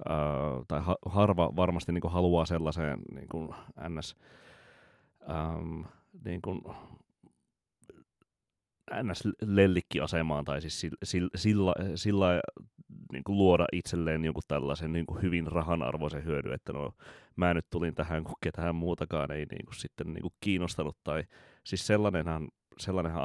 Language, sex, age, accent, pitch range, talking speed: Finnish, male, 30-49, native, 75-90 Hz, 125 wpm